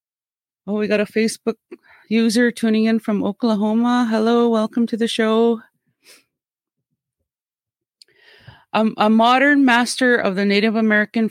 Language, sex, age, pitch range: English, female, 30-49, 190-235 Hz